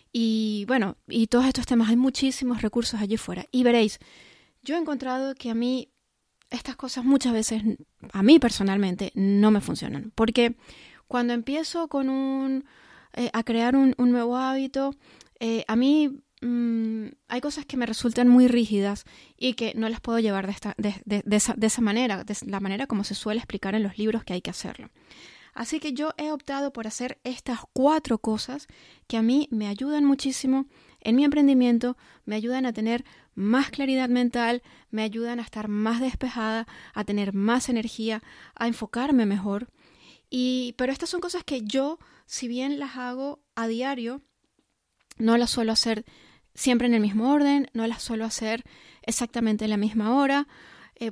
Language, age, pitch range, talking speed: Spanish, 20-39, 220-265 Hz, 180 wpm